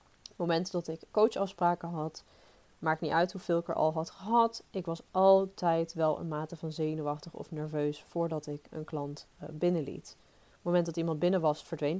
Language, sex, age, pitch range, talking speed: Dutch, female, 30-49, 155-185 Hz, 190 wpm